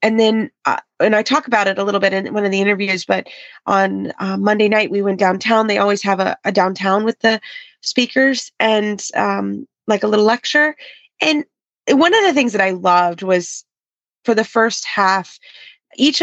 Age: 20-39